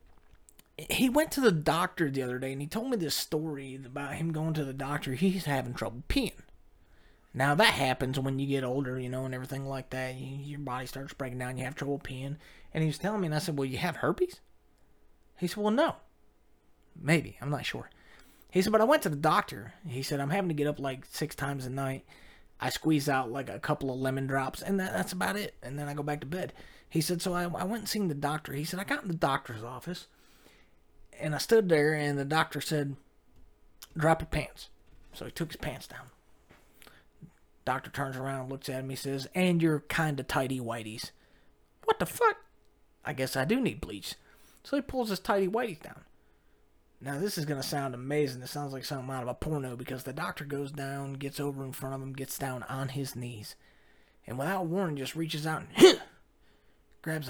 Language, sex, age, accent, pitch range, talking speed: English, male, 30-49, American, 130-160 Hz, 220 wpm